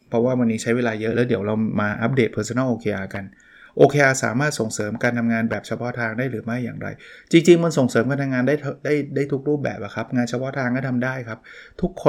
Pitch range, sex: 115-135 Hz, male